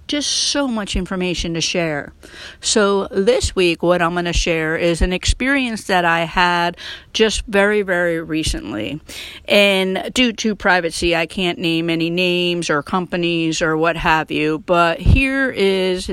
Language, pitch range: English, 165-190 Hz